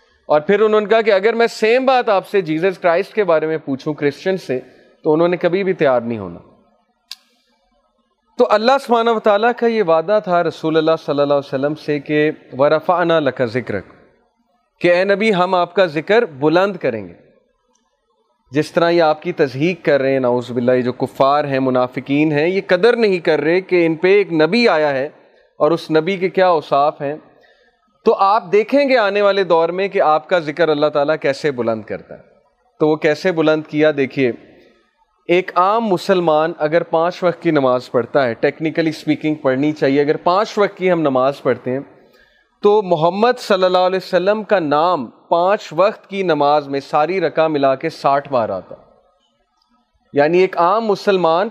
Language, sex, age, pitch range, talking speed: Urdu, male, 30-49, 150-195 Hz, 190 wpm